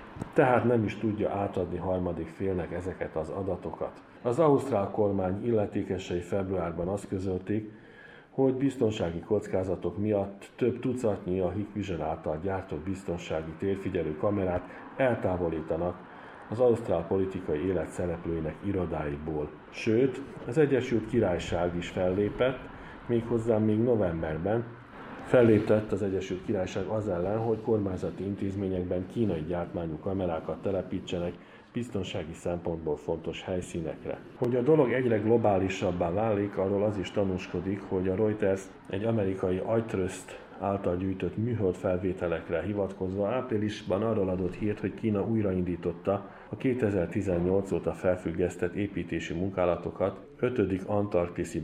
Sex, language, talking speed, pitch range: male, Hungarian, 115 wpm, 90-105 Hz